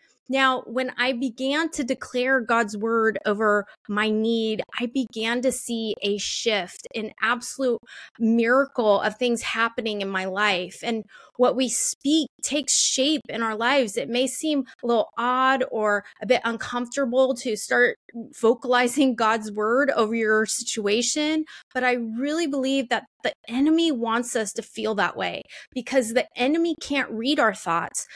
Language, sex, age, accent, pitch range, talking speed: English, female, 20-39, American, 220-270 Hz, 155 wpm